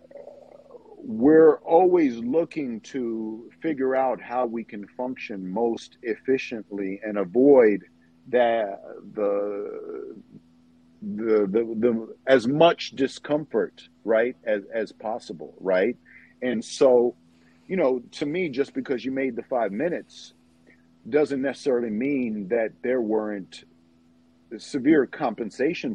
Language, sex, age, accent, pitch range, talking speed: English, male, 50-69, American, 100-135 Hz, 110 wpm